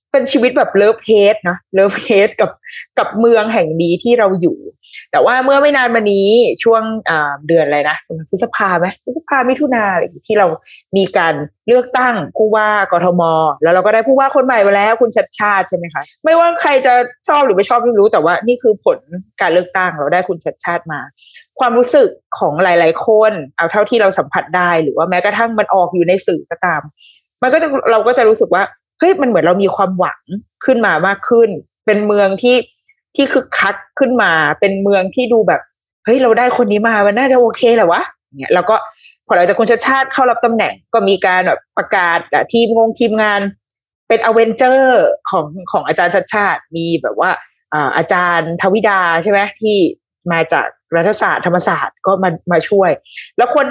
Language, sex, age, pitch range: Thai, female, 20-39, 180-245 Hz